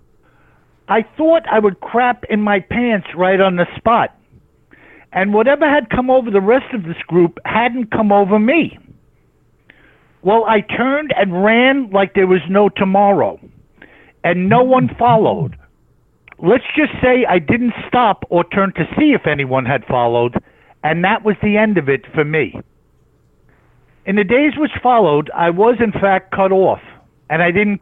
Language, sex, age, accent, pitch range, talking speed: English, male, 60-79, American, 175-235 Hz, 165 wpm